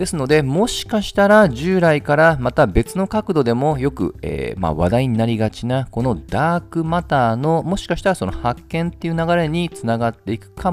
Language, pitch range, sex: Japanese, 95-155 Hz, male